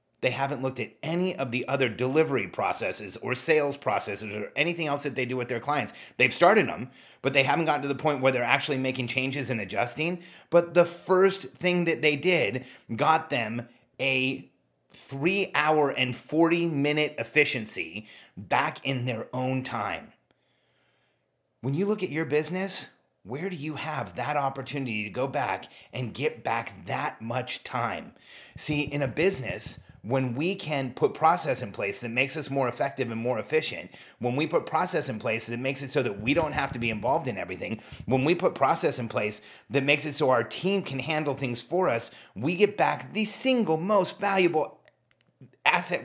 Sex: male